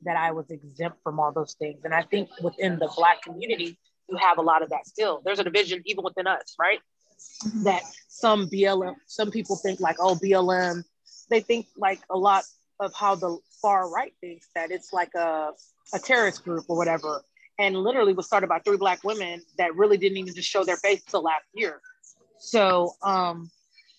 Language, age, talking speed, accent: English, 30-49, 200 wpm, American